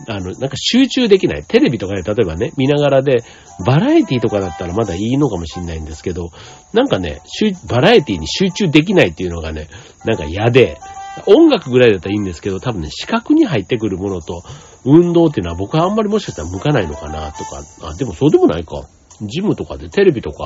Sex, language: male, Japanese